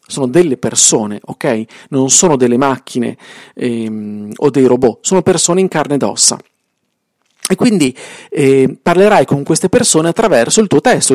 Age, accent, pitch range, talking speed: 40-59, native, 135-195 Hz, 155 wpm